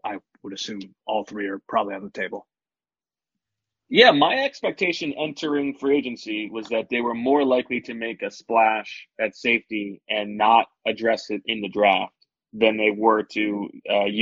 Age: 20-39